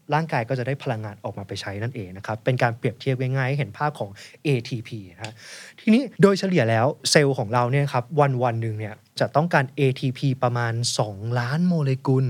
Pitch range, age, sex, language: 115-160 Hz, 20-39, male, Thai